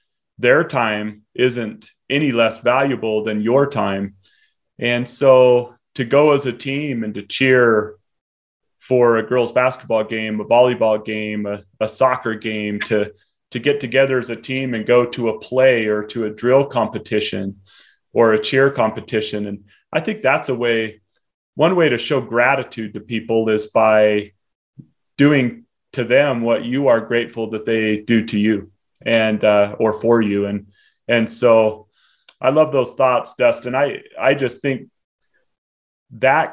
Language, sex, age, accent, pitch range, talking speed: English, male, 30-49, American, 110-130 Hz, 160 wpm